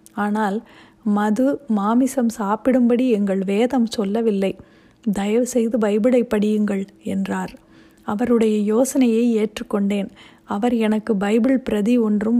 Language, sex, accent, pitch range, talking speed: Tamil, female, native, 215-240 Hz, 90 wpm